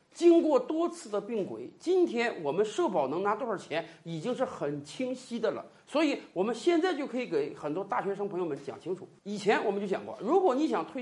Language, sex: Chinese, male